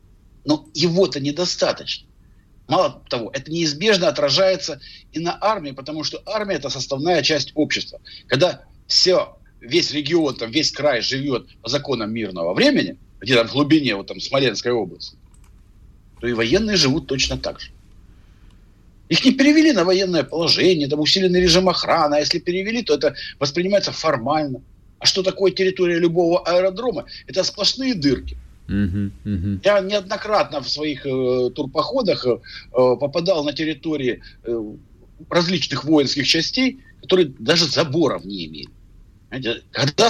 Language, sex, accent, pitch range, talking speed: Russian, male, native, 105-170 Hz, 140 wpm